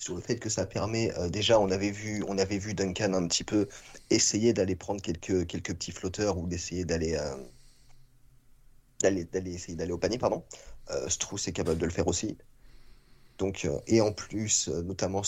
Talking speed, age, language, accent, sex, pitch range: 195 wpm, 30-49, French, French, male, 95-120 Hz